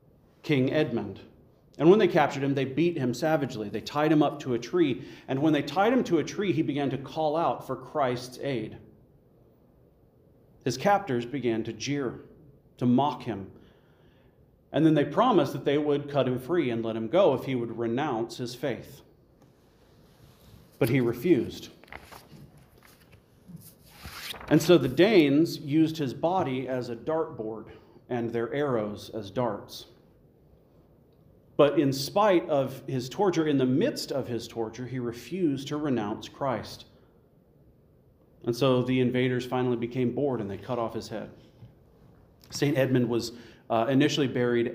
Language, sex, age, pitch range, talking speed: English, male, 40-59, 115-145 Hz, 155 wpm